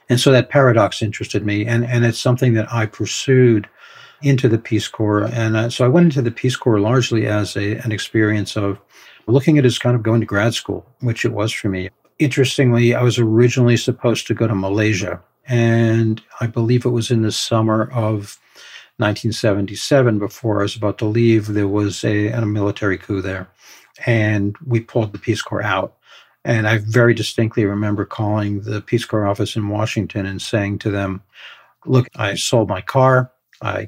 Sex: male